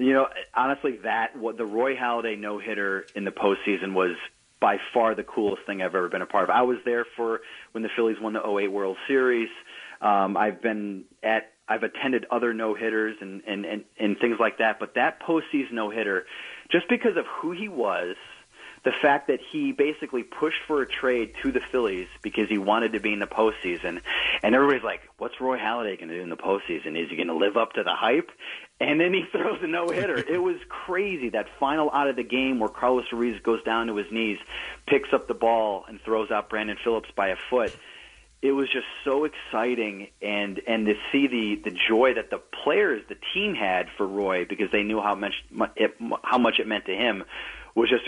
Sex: male